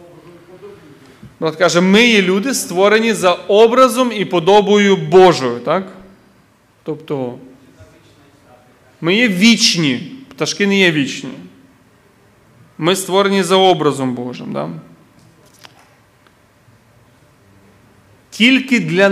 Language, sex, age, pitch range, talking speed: Ukrainian, male, 30-49, 150-220 Hz, 90 wpm